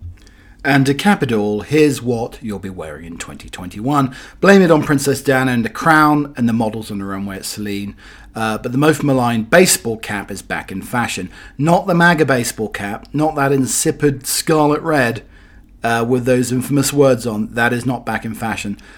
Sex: male